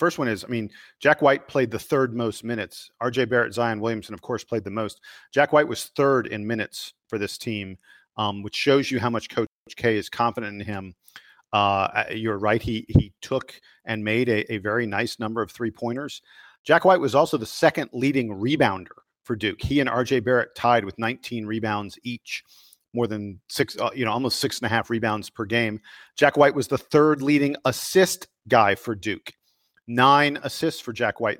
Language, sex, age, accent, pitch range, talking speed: English, male, 40-59, American, 110-140 Hz, 190 wpm